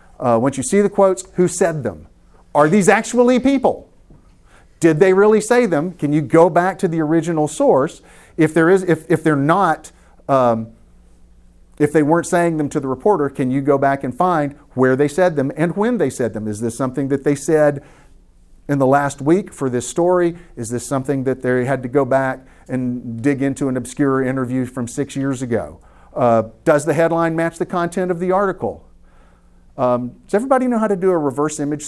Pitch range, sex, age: 115-175 Hz, male, 40-59